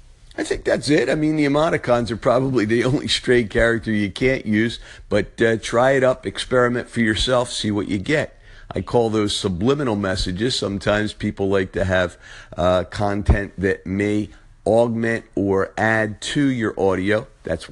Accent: American